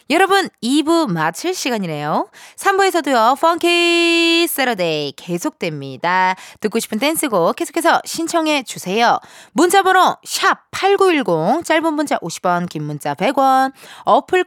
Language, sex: Korean, female